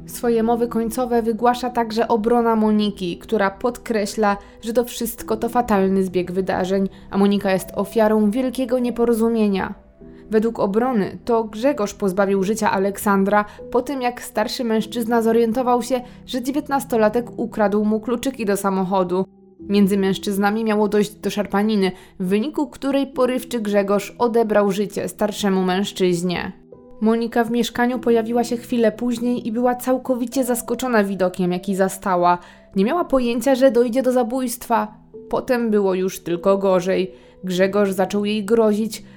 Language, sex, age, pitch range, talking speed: Polish, female, 20-39, 195-240 Hz, 135 wpm